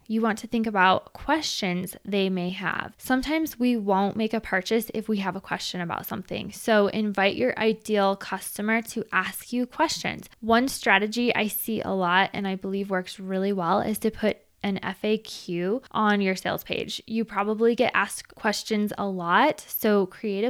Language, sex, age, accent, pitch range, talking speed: English, female, 10-29, American, 195-235 Hz, 180 wpm